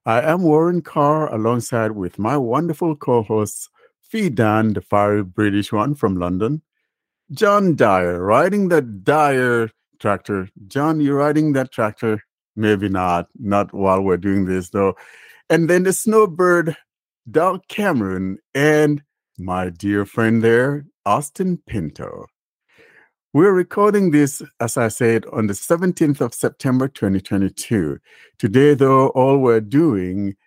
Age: 60-79